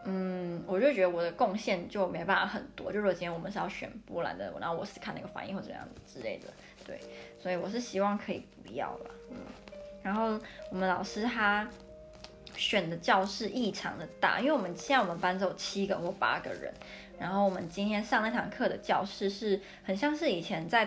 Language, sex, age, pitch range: Chinese, female, 20-39, 190-230 Hz